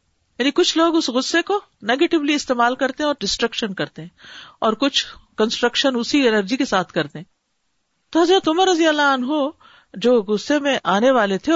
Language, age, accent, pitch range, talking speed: English, 50-69, Indian, 215-290 Hz, 185 wpm